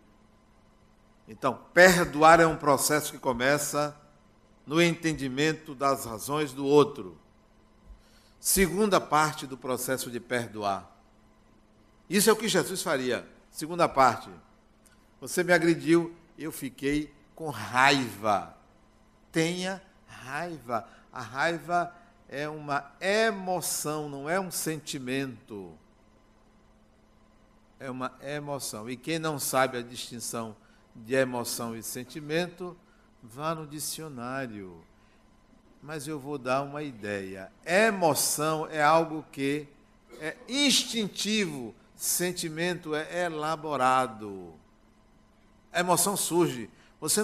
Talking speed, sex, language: 100 wpm, male, Portuguese